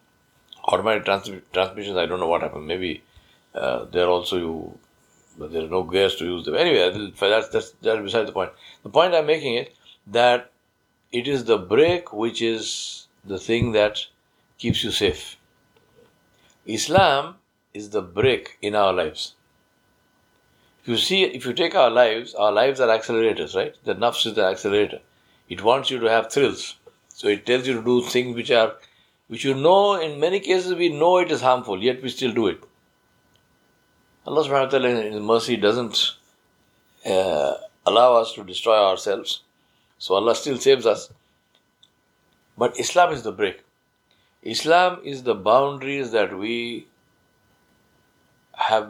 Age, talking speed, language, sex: 60-79, 165 wpm, English, male